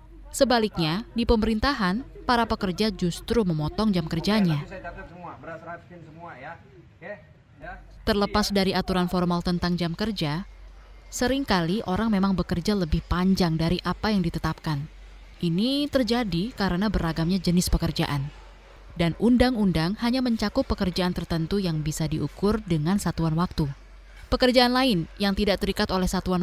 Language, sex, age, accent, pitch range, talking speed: Indonesian, female, 20-39, native, 170-215 Hz, 115 wpm